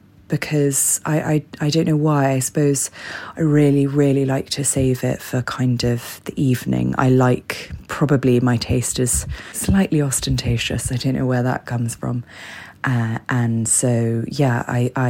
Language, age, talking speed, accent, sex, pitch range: English, 20-39, 165 wpm, British, female, 120-140 Hz